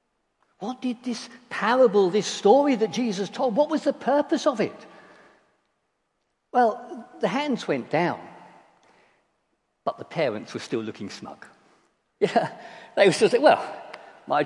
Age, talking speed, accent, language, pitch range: 60-79, 140 wpm, British, English, 135-210 Hz